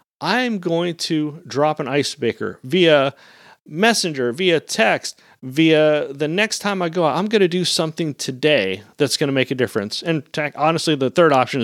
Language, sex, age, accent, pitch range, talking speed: English, male, 40-59, American, 135-185 Hz, 180 wpm